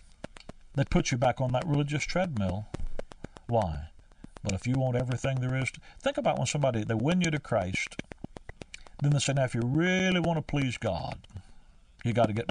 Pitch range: 125-175 Hz